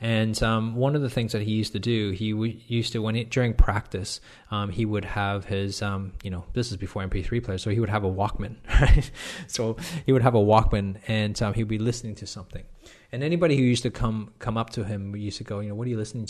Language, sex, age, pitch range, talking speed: English, male, 20-39, 100-120 Hz, 265 wpm